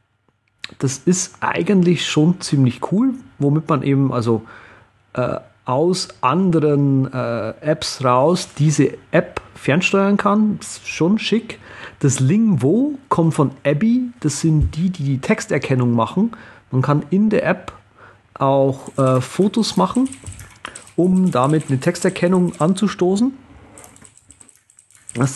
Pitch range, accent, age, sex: 115-170 Hz, German, 40-59, male